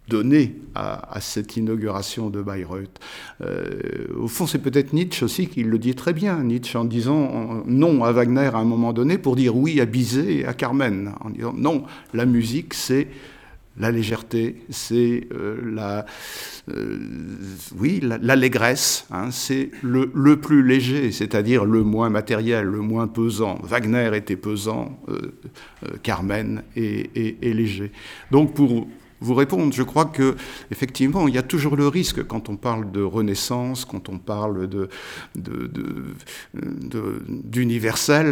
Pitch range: 105-130 Hz